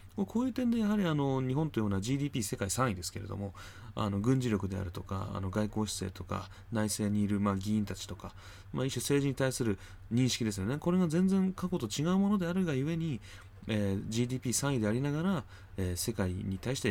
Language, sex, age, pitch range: Japanese, male, 20-39, 95-120 Hz